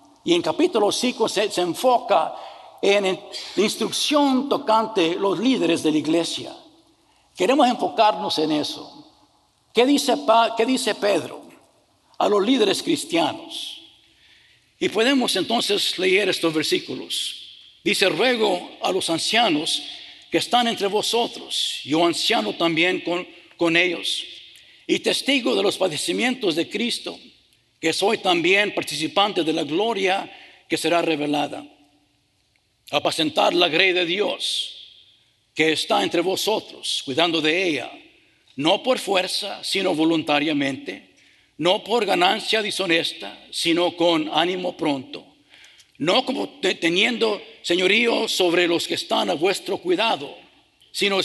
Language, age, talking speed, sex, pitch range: English, 60-79, 125 wpm, male, 165-240 Hz